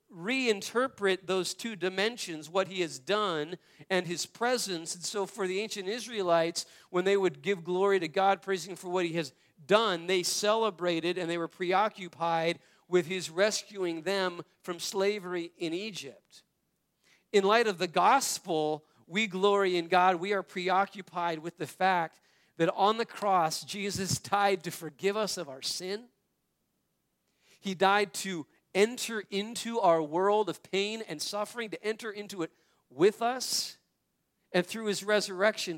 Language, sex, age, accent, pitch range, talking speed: English, male, 40-59, American, 165-200 Hz, 155 wpm